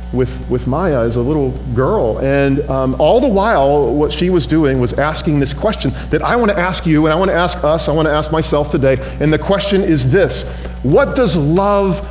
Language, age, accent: English, 40-59, American